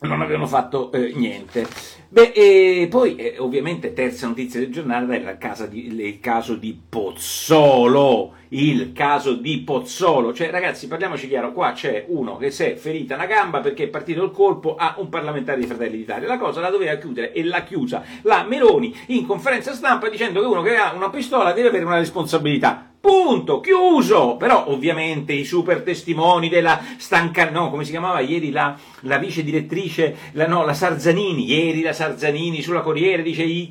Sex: male